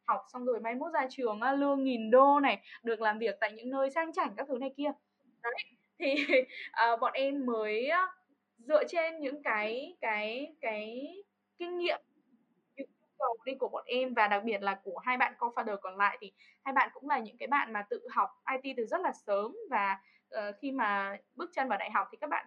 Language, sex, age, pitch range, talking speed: Vietnamese, female, 10-29, 215-280 Hz, 215 wpm